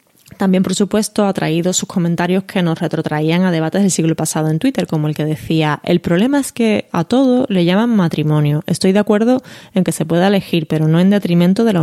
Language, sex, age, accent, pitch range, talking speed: Spanish, female, 20-39, Spanish, 160-205 Hz, 225 wpm